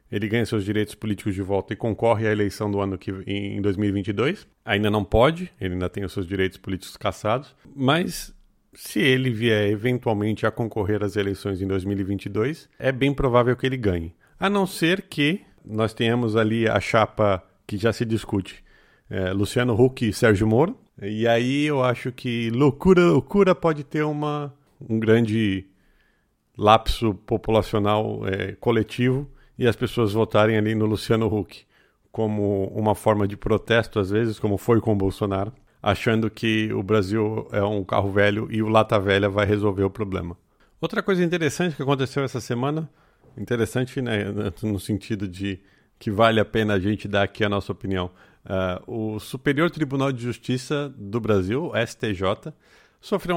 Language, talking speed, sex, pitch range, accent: Portuguese, 165 wpm, male, 100-125 Hz, Brazilian